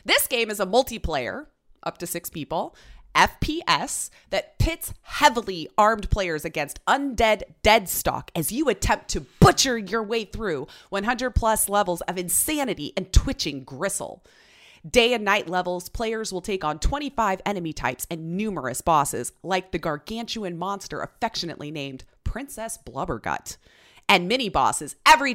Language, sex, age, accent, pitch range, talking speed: English, female, 30-49, American, 175-250 Hz, 140 wpm